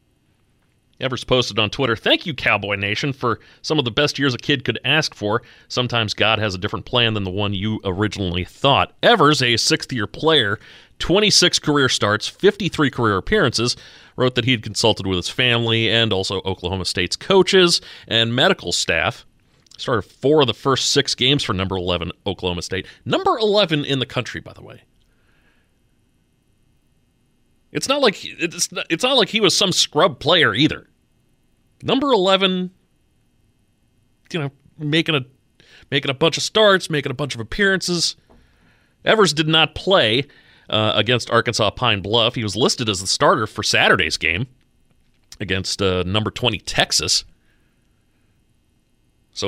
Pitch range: 105-155 Hz